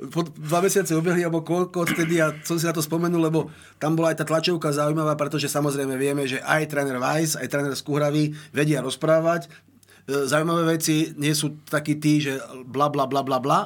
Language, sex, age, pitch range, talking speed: Slovak, male, 30-49, 145-160 Hz, 185 wpm